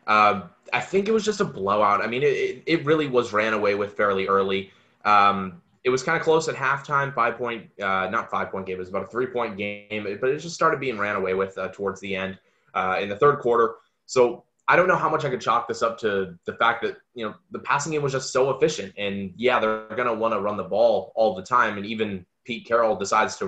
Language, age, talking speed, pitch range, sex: English, 20-39, 250 wpm, 100-120 Hz, male